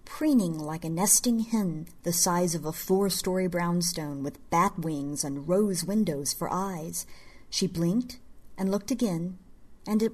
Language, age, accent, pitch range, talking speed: English, 50-69, American, 165-215 Hz, 155 wpm